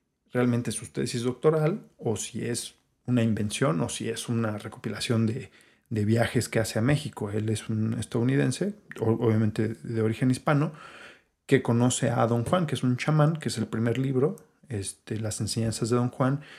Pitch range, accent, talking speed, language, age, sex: 115-130 Hz, Mexican, 175 wpm, Spanish, 40-59, male